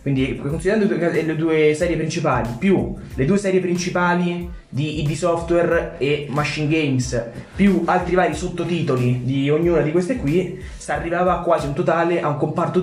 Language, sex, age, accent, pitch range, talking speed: Italian, male, 20-39, native, 130-185 Hz, 160 wpm